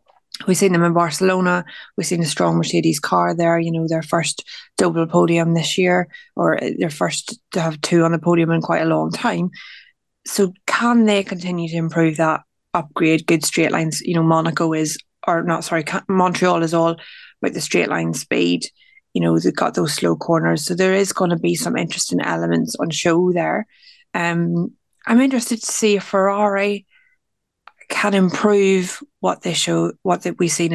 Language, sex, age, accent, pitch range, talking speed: English, female, 20-39, Irish, 165-195 Hz, 185 wpm